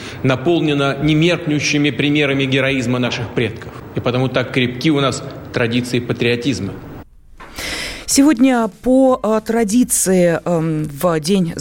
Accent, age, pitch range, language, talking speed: native, 30-49, 165-220 Hz, Russian, 100 wpm